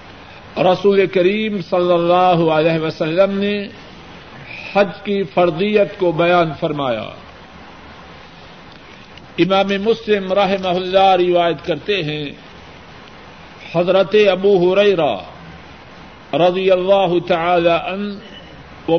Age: 50-69